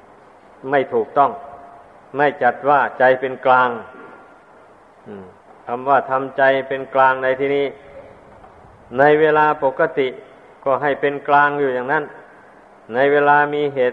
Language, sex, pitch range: Thai, male, 130-145 Hz